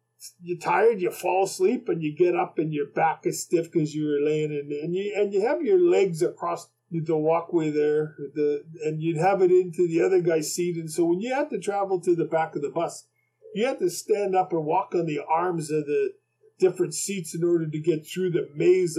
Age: 50-69